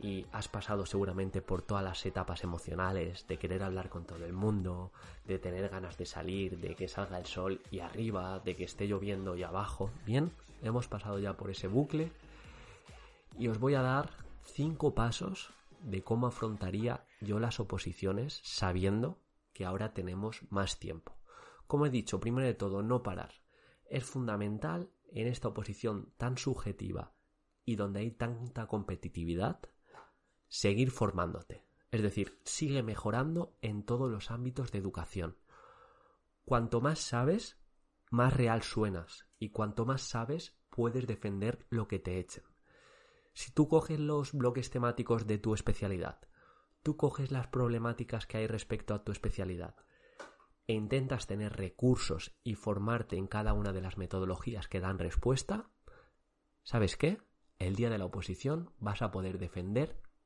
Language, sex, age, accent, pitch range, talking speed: Spanish, male, 20-39, Spanish, 95-120 Hz, 150 wpm